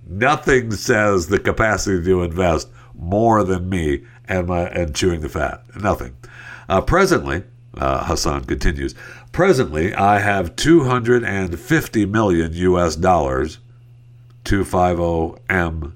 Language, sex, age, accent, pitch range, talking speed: English, male, 60-79, American, 90-120 Hz, 110 wpm